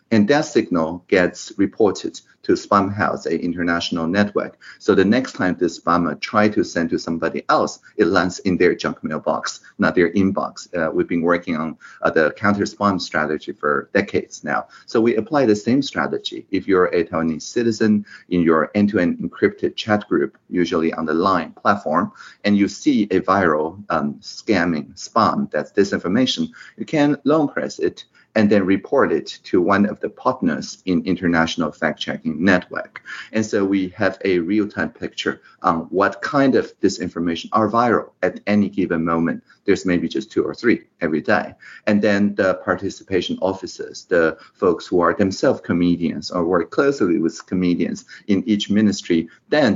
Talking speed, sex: 170 wpm, male